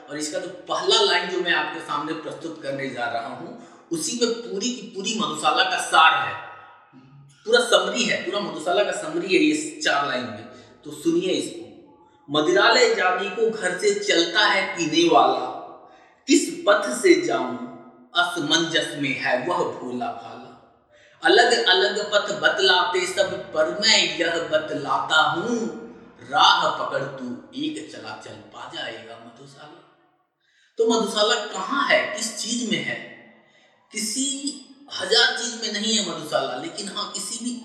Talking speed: 90 wpm